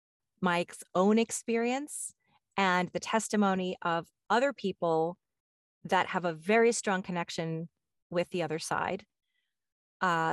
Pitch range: 170-225 Hz